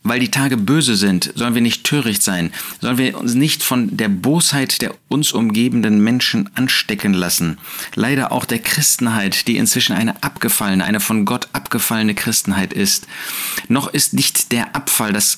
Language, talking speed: German, 170 wpm